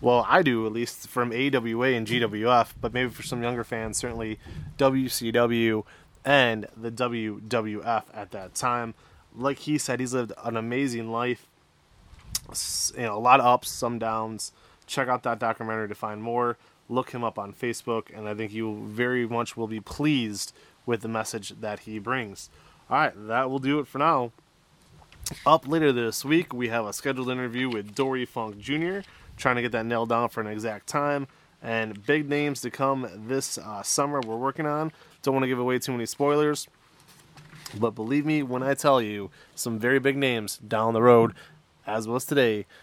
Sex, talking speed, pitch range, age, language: male, 185 wpm, 110-135 Hz, 20-39, English